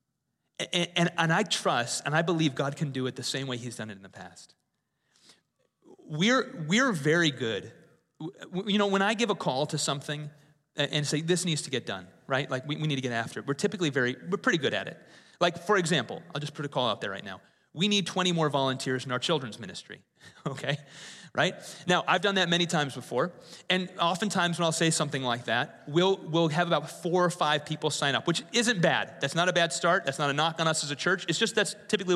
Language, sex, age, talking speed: English, male, 30-49, 235 wpm